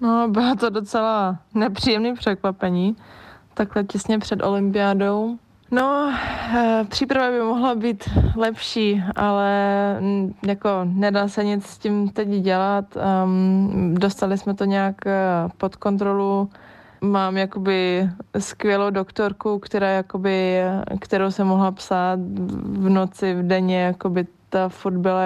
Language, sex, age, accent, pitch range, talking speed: Czech, female, 20-39, native, 180-200 Hz, 115 wpm